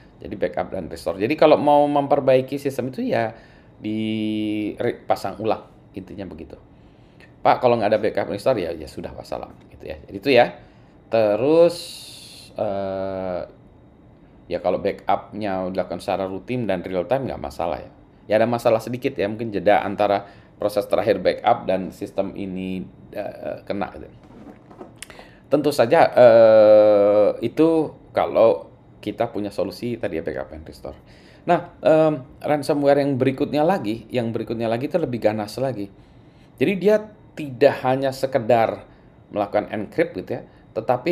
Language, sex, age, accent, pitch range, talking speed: Indonesian, male, 20-39, native, 105-140 Hz, 140 wpm